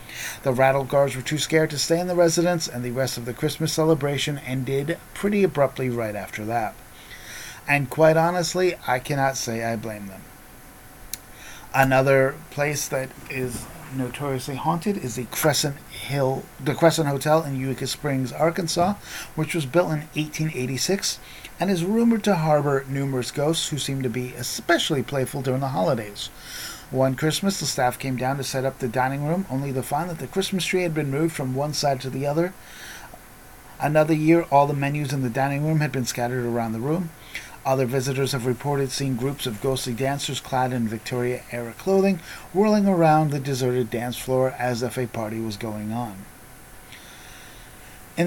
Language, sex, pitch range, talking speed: English, male, 130-160 Hz, 175 wpm